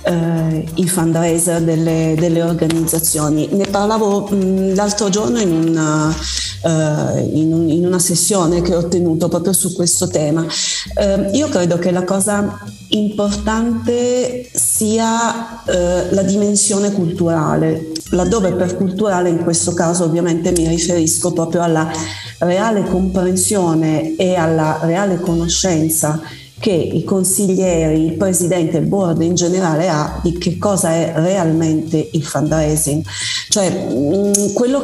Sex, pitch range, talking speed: female, 160-190 Hz, 115 wpm